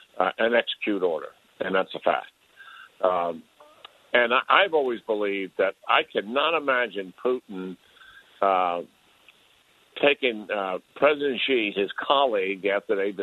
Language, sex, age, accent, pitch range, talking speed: English, male, 60-79, American, 105-145 Hz, 130 wpm